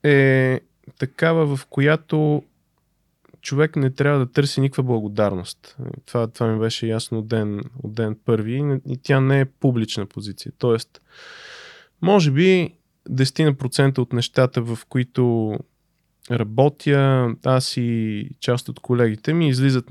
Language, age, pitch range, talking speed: Bulgarian, 20-39, 115-140 Hz, 125 wpm